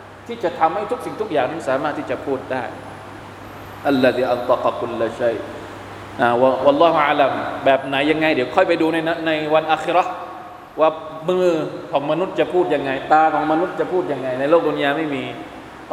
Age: 20-39